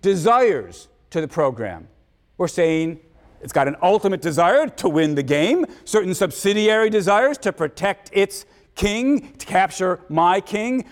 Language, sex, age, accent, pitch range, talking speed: English, male, 50-69, American, 175-220 Hz, 145 wpm